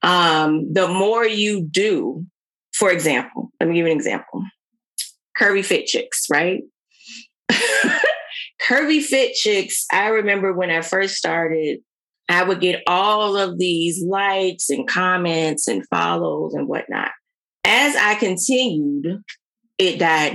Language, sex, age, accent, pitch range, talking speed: English, female, 30-49, American, 155-200 Hz, 130 wpm